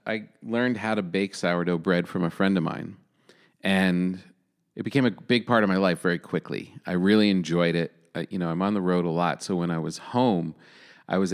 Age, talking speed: 40-59, 230 wpm